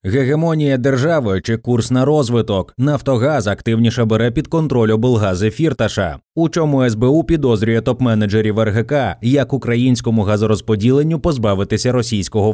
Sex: male